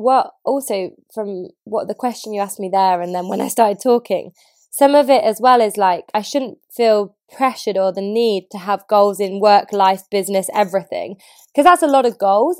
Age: 20-39